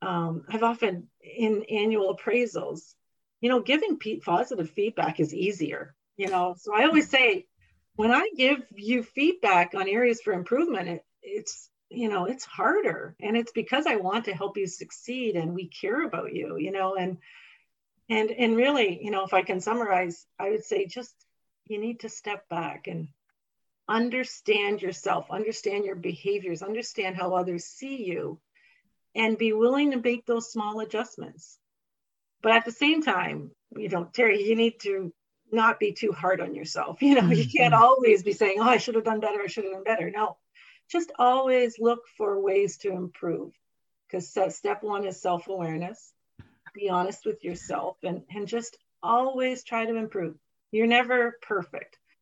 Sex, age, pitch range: female, 40-59, 190-245 Hz